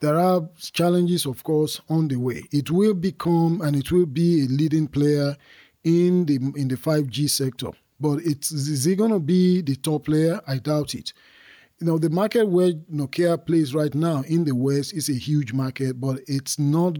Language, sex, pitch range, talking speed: English, male, 135-160 Hz, 200 wpm